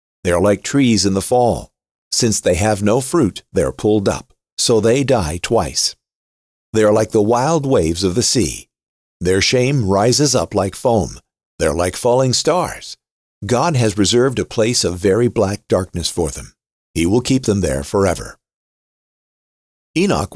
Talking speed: 170 wpm